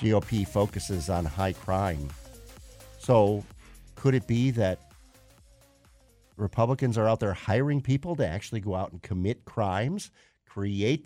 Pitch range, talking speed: 90-125 Hz, 130 wpm